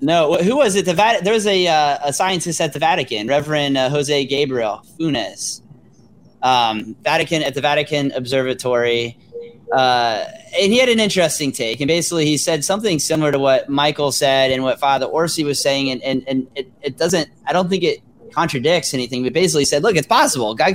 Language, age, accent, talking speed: English, 30-49, American, 200 wpm